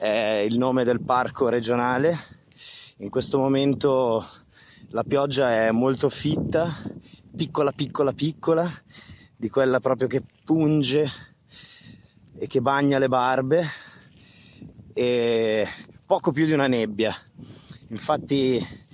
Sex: male